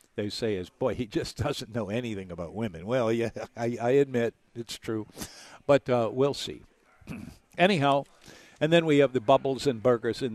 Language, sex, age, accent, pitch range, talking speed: English, male, 60-79, American, 110-145 Hz, 185 wpm